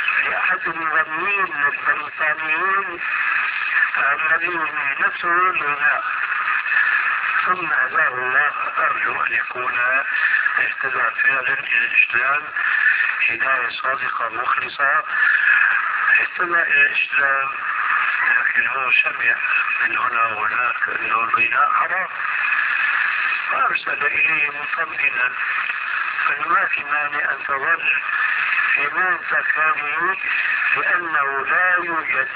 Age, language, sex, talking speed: 50-69, Arabic, male, 85 wpm